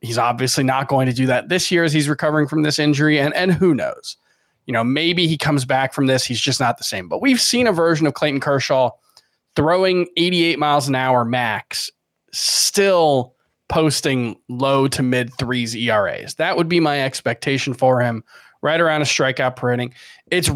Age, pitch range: 20-39, 125-165 Hz